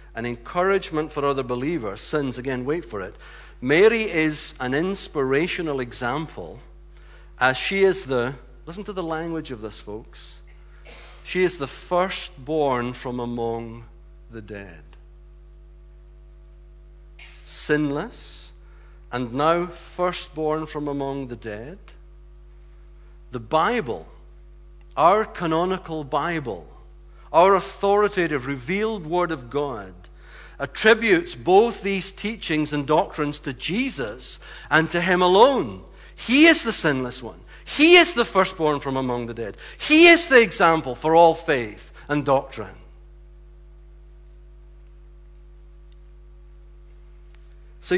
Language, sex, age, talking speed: English, male, 50-69, 110 wpm